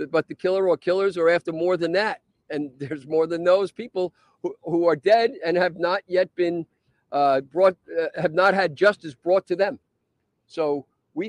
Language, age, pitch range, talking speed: English, 50-69, 150-190 Hz, 195 wpm